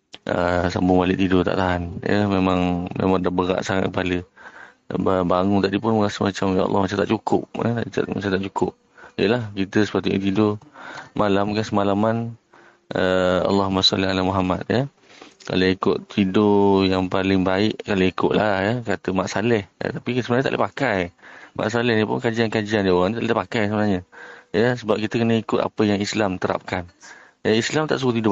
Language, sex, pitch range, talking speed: Malay, male, 95-115 Hz, 185 wpm